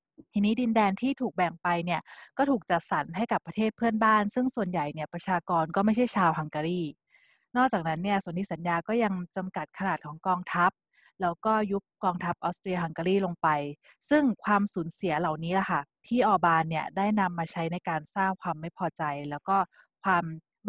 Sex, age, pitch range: female, 20-39, 170-210 Hz